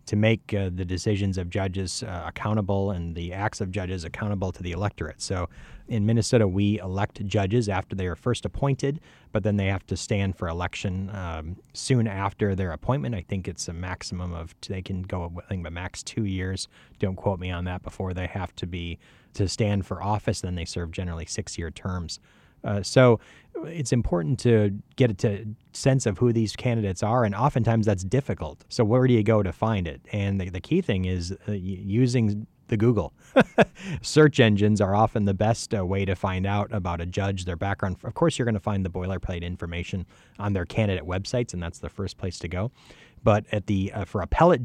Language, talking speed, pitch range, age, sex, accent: English, 210 wpm, 95-110 Hz, 30-49, male, American